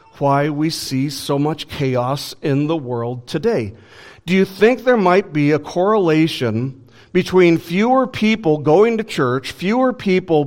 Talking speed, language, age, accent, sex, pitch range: 150 wpm, English, 50-69, American, male, 125-190 Hz